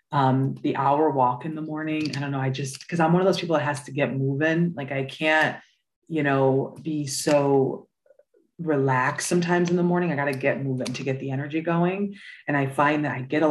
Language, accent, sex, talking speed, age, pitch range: English, American, female, 230 wpm, 30-49, 135-155 Hz